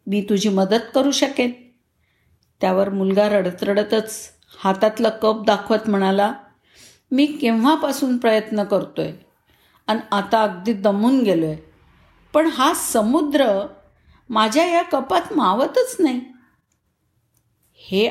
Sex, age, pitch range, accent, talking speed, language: female, 50-69, 185-255 Hz, native, 115 wpm, Marathi